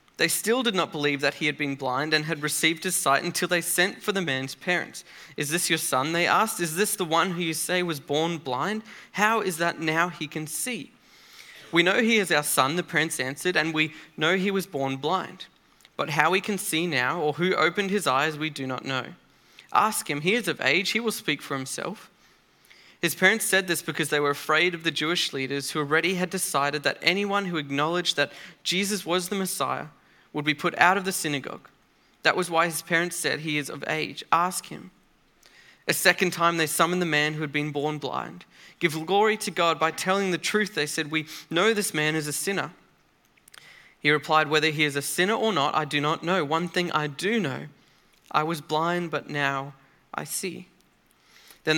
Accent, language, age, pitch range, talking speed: Australian, English, 20-39, 150-185 Hz, 215 wpm